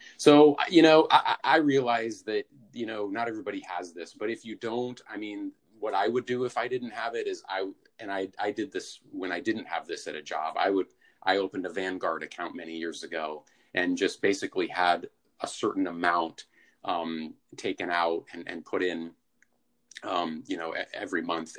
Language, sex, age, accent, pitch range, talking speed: English, male, 30-49, American, 85-140 Hz, 200 wpm